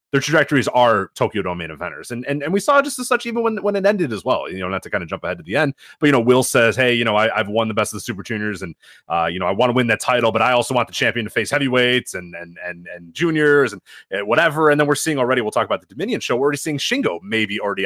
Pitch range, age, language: 115-185 Hz, 30-49, English